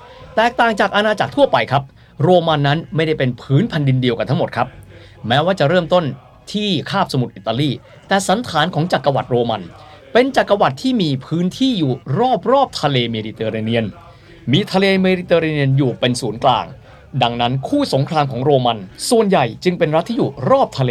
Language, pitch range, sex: Thai, 120-170 Hz, male